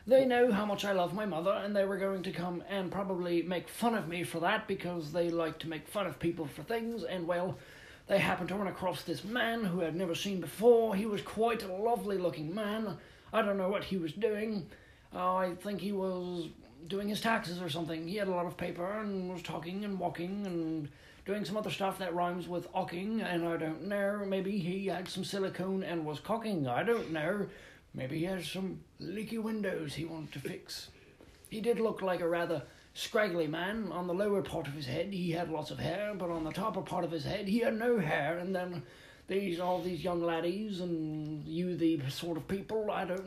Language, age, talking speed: English, 30-49, 225 wpm